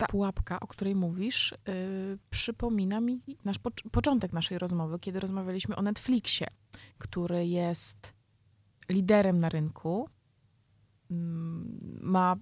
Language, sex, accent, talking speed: Polish, female, native, 115 wpm